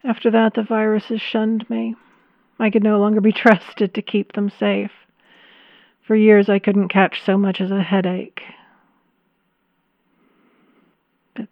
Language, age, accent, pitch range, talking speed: English, 40-59, American, 205-240 Hz, 140 wpm